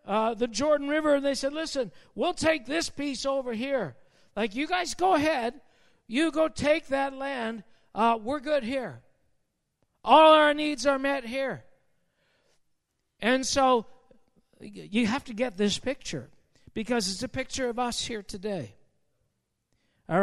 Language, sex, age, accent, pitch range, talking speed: English, male, 60-79, American, 235-300 Hz, 150 wpm